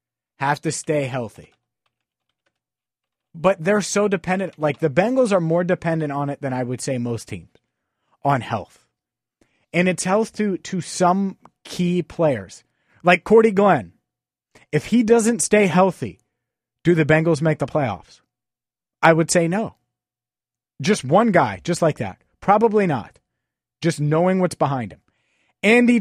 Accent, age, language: American, 30-49, English